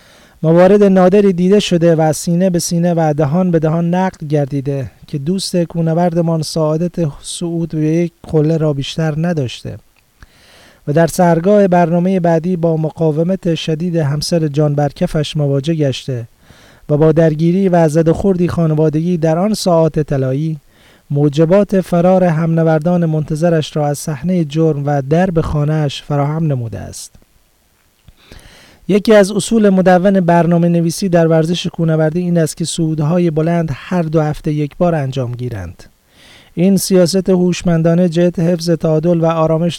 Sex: male